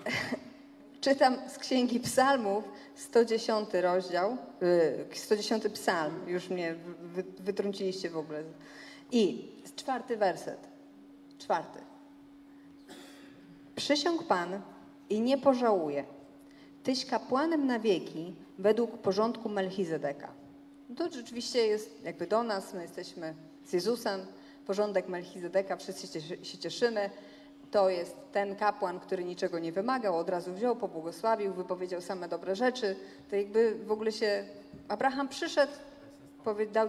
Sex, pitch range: female, 190-265 Hz